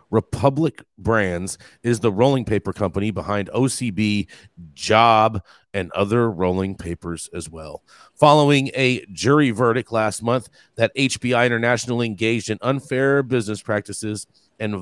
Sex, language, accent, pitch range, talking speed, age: male, English, American, 105-140 Hz, 125 wpm, 40-59